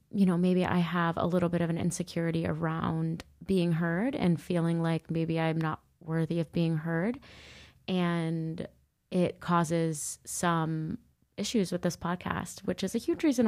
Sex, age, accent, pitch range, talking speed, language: female, 20-39, American, 165-185 Hz, 165 wpm, English